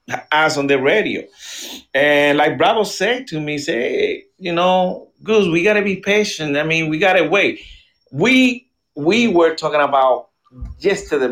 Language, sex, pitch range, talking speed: English, male, 125-180 Hz, 155 wpm